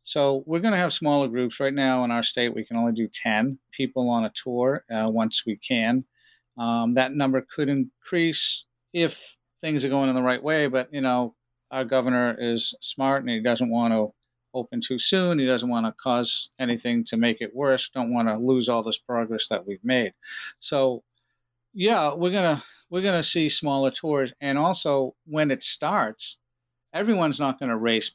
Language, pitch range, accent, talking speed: English, 115-140 Hz, American, 200 wpm